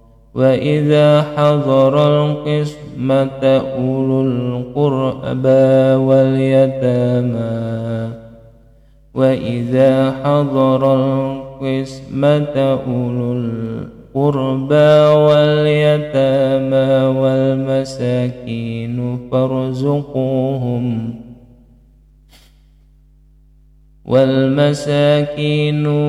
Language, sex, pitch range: Indonesian, male, 125-135 Hz